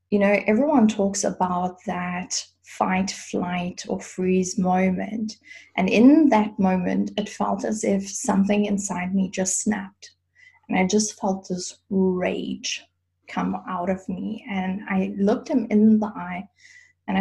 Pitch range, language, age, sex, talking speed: 185-220 Hz, English, 20-39, female, 145 wpm